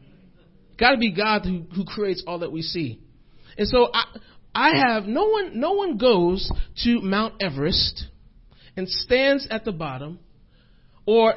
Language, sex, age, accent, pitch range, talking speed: English, male, 40-59, American, 135-210 Hz, 160 wpm